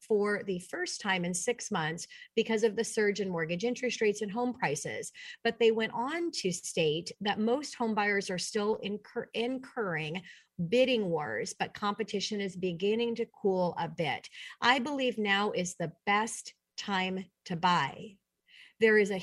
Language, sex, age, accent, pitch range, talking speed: English, female, 40-59, American, 190-245 Hz, 165 wpm